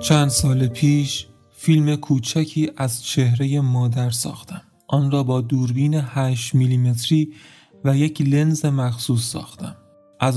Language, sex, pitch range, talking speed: Persian, male, 125-145 Hz, 120 wpm